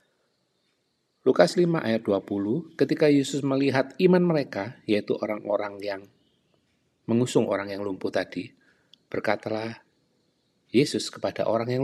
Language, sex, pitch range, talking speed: Malay, male, 105-135 Hz, 110 wpm